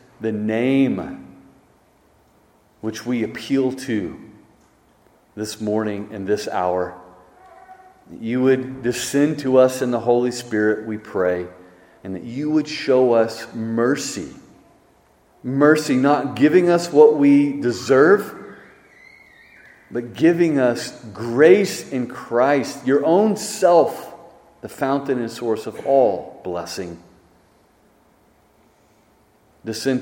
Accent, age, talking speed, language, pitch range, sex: American, 40-59, 105 wpm, English, 110-155 Hz, male